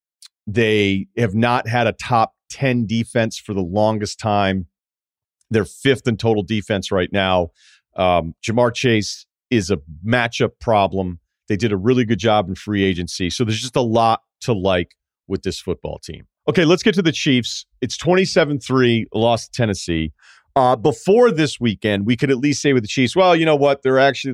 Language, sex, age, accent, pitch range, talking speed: English, male, 40-59, American, 95-125 Hz, 185 wpm